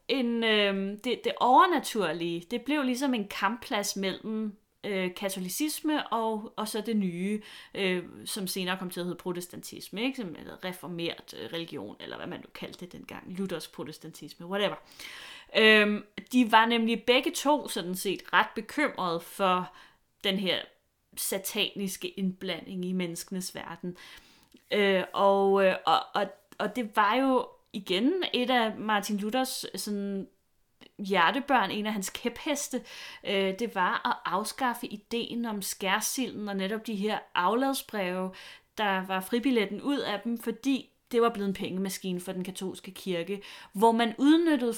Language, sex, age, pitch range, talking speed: Danish, female, 30-49, 190-240 Hz, 150 wpm